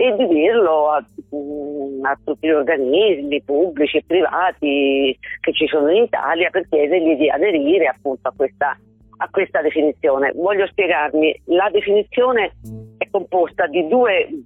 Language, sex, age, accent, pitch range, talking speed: Italian, female, 40-59, native, 140-195 Hz, 140 wpm